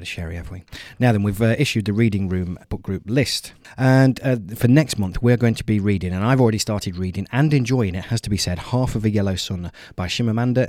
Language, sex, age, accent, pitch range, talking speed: English, male, 30-49, British, 90-115 Hz, 240 wpm